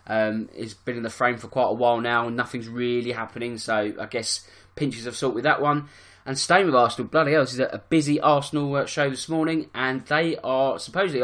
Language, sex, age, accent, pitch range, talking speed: English, male, 20-39, British, 115-145 Hz, 225 wpm